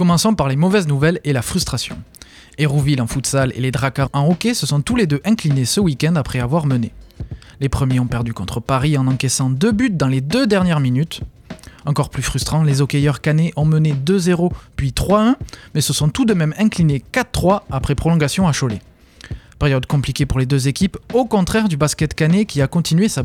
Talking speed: 205 wpm